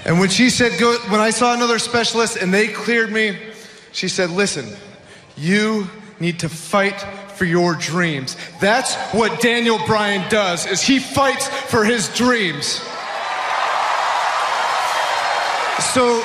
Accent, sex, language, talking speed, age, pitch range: American, male, English, 130 wpm, 30-49, 210-300 Hz